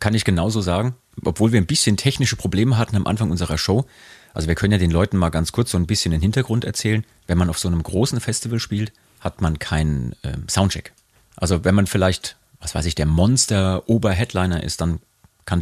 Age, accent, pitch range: 40-59, German, 85-110 Hz